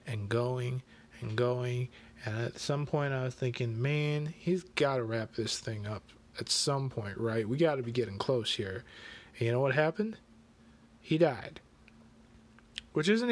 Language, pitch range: English, 115-150 Hz